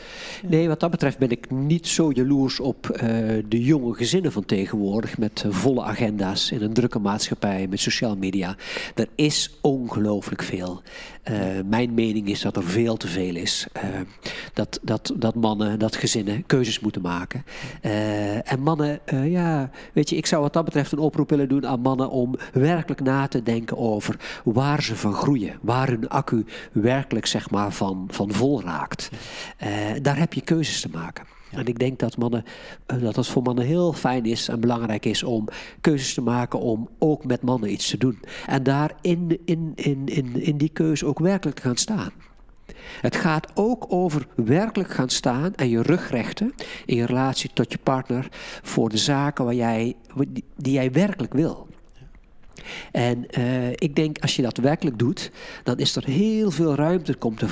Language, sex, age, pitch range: Dutch, male, 50-69, 115-150 Hz